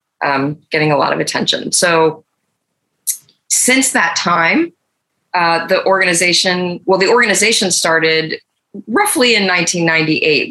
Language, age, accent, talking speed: English, 20-39, American, 110 wpm